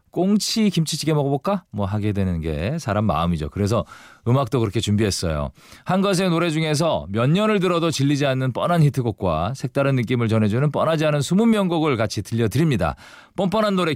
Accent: native